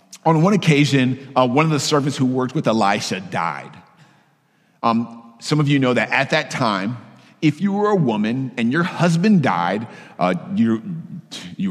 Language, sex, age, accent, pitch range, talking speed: English, male, 50-69, American, 130-190 Hz, 170 wpm